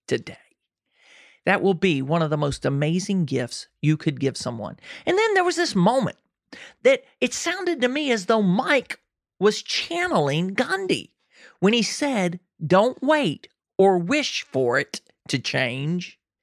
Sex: male